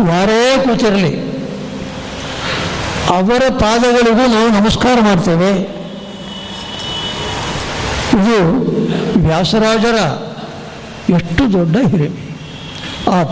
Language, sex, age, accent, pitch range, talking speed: Kannada, male, 60-79, native, 170-210 Hz, 60 wpm